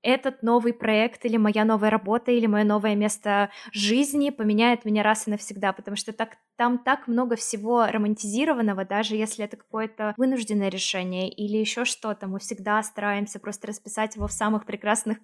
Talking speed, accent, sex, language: 165 wpm, native, female, Russian